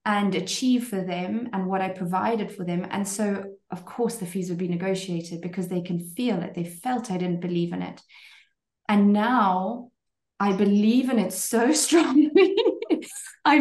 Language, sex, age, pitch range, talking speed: English, female, 30-49, 180-225 Hz, 175 wpm